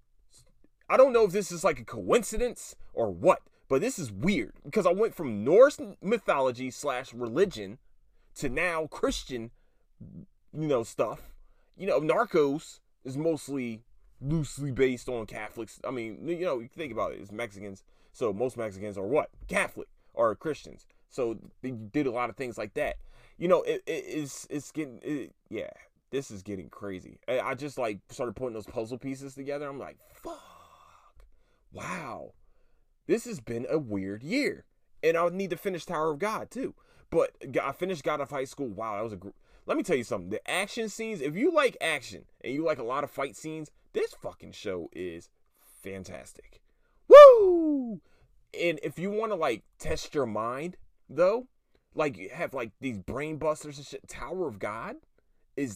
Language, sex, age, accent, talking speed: English, male, 30-49, American, 180 wpm